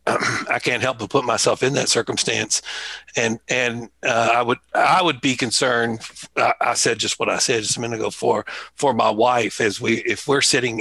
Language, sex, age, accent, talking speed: English, male, 60-79, American, 210 wpm